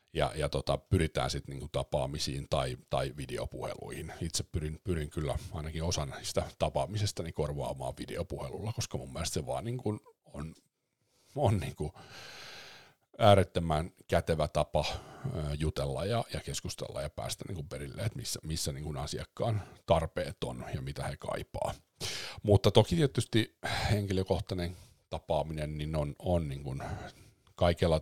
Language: Finnish